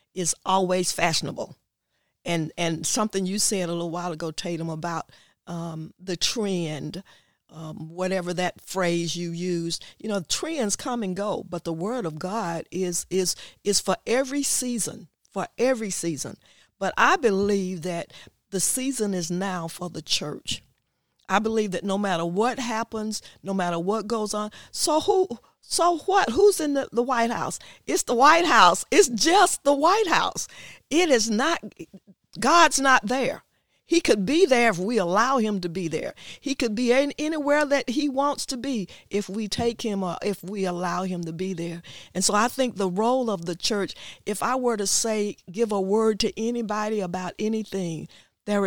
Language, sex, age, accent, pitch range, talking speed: English, female, 40-59, American, 180-240 Hz, 180 wpm